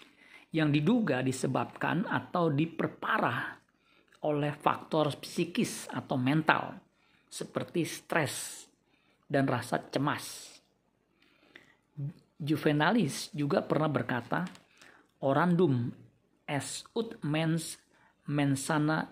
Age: 50-69